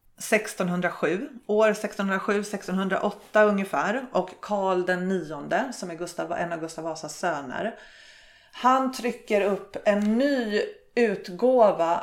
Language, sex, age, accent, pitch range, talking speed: Swedish, female, 30-49, native, 170-225 Hz, 105 wpm